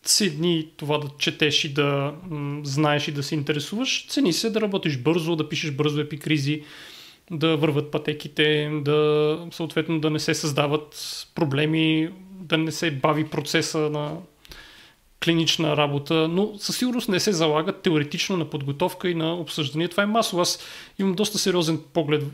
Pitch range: 155-185 Hz